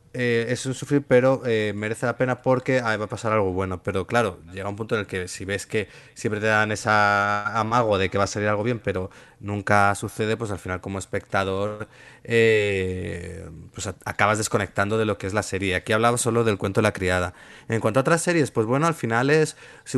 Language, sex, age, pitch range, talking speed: Spanish, male, 30-49, 100-120 Hz, 230 wpm